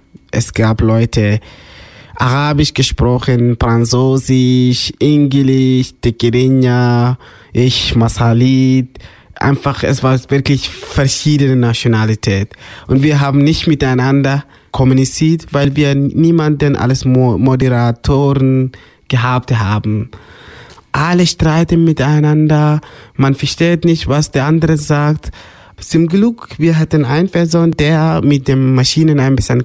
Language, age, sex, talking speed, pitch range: German, 20-39, male, 105 wpm, 120-150 Hz